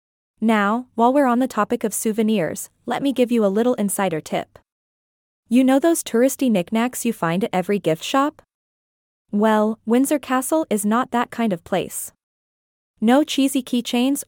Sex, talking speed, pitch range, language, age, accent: female, 165 wpm, 200-255 Hz, English, 20-39, American